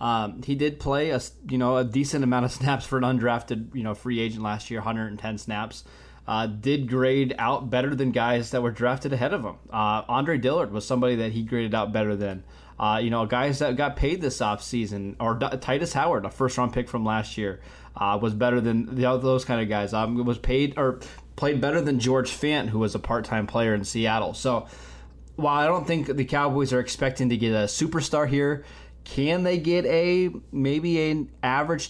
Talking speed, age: 220 wpm, 20-39